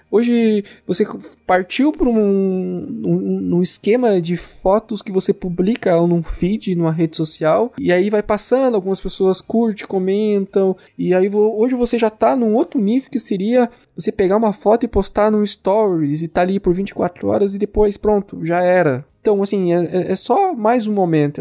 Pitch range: 145-210 Hz